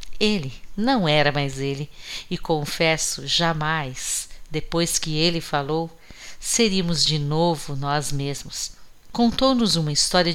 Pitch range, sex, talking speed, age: 145-180 Hz, female, 115 wpm, 50-69